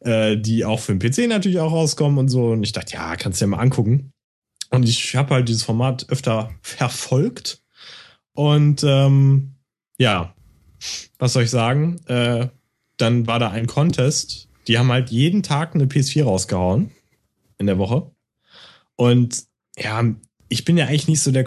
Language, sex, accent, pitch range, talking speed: German, male, German, 115-145 Hz, 170 wpm